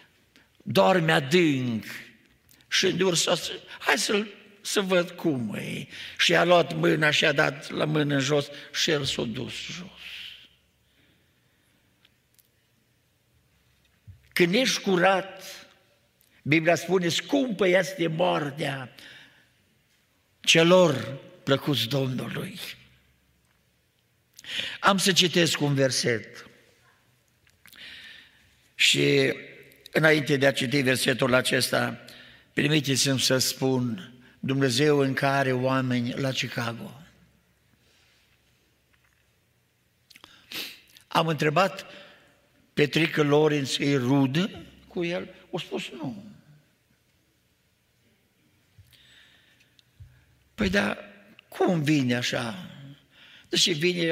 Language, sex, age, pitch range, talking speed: Romanian, male, 60-79, 130-175 Hz, 85 wpm